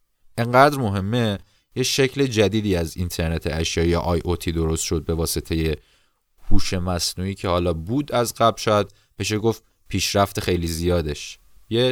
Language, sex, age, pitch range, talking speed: Persian, male, 30-49, 90-115 Hz, 140 wpm